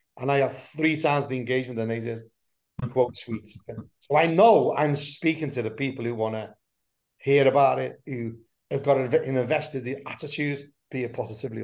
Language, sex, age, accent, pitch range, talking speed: English, male, 30-49, British, 125-150 Hz, 175 wpm